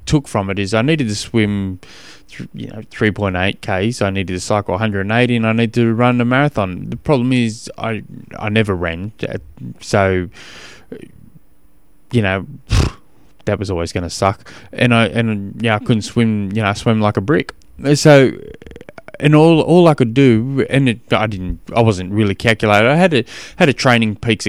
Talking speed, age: 190 wpm, 20-39